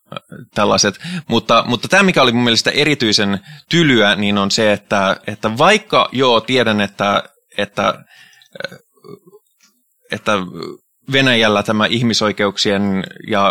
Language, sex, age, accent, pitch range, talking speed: Finnish, male, 20-39, native, 100-135 Hz, 105 wpm